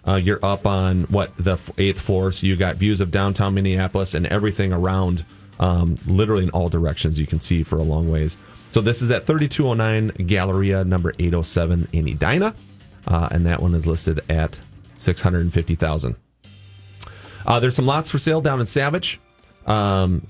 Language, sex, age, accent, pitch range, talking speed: English, male, 30-49, American, 90-110 Hz, 170 wpm